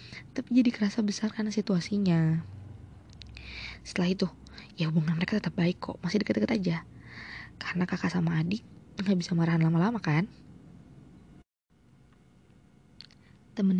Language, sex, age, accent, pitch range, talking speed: Indonesian, female, 20-39, native, 175-205 Hz, 115 wpm